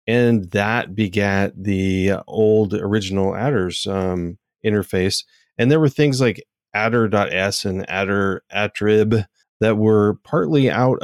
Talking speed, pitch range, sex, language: 120 wpm, 100-120 Hz, male, English